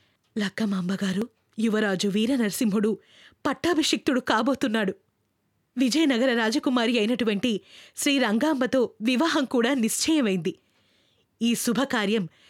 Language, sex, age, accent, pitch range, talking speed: Telugu, female, 20-39, native, 210-305 Hz, 60 wpm